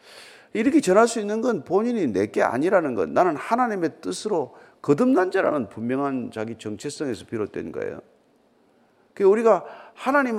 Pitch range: 145-235 Hz